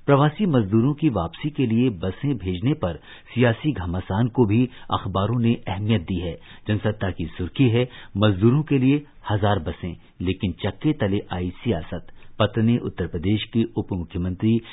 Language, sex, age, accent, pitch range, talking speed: Hindi, male, 50-69, native, 95-125 Hz, 150 wpm